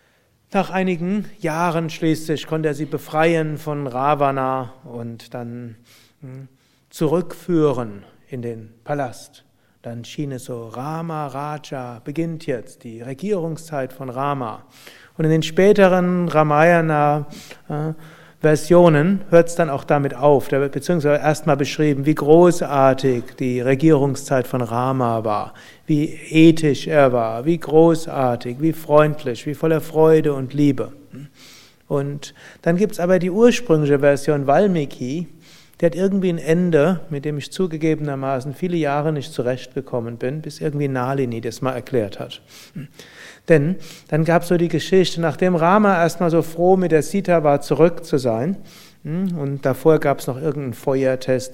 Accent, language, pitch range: German, German, 130-160 Hz